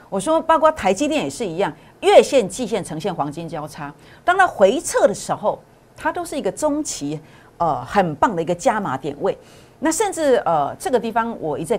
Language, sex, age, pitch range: Chinese, female, 50-69, 155-245 Hz